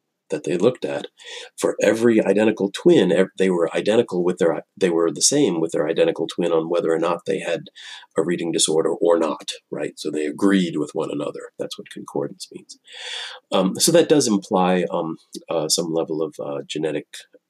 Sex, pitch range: male, 85-125 Hz